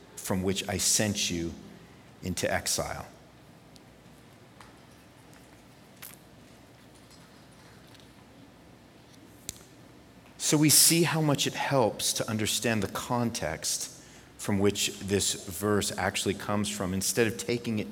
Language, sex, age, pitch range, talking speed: English, male, 40-59, 100-145 Hz, 95 wpm